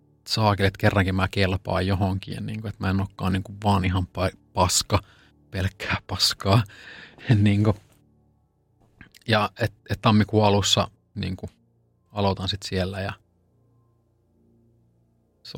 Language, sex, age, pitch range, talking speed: Finnish, male, 30-49, 95-110 Hz, 120 wpm